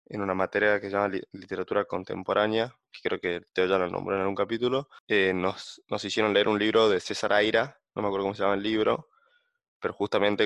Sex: male